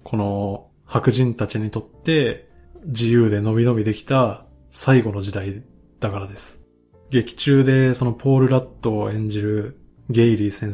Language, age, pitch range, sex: Japanese, 20-39, 105-130 Hz, male